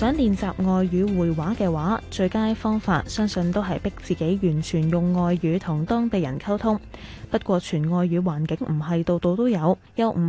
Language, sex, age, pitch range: Chinese, female, 10-29, 165-210 Hz